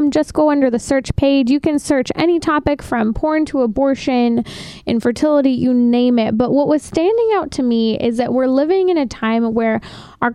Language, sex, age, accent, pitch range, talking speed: English, female, 20-39, American, 235-285 Hz, 205 wpm